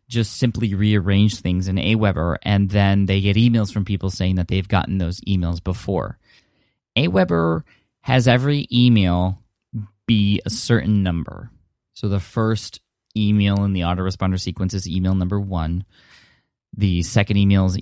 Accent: American